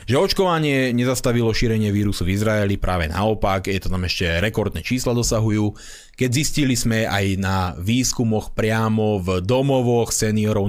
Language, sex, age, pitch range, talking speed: Slovak, male, 30-49, 110-150 Hz, 145 wpm